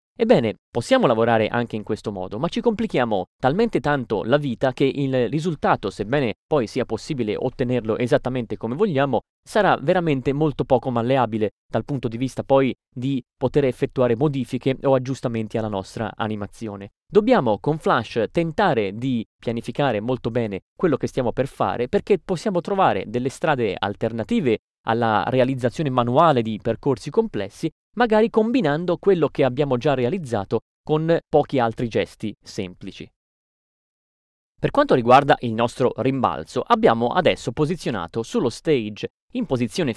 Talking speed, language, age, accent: 140 wpm, Italian, 30-49, native